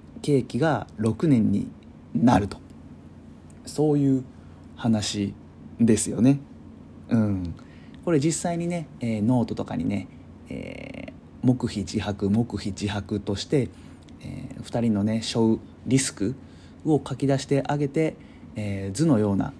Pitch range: 100-135 Hz